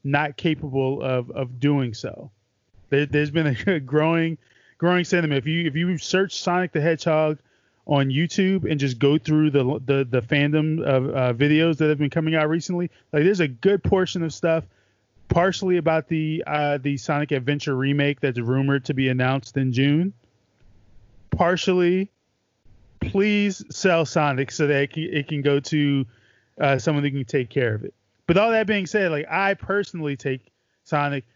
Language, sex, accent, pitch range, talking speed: English, male, American, 135-165 Hz, 175 wpm